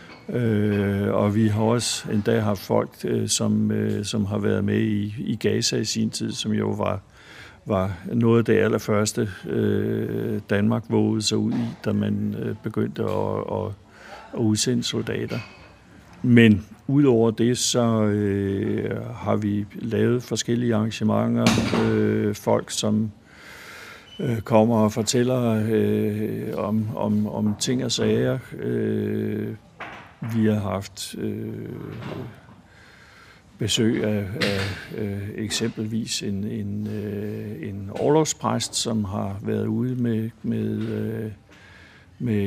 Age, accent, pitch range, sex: 60-79, native, 105-115 Hz, male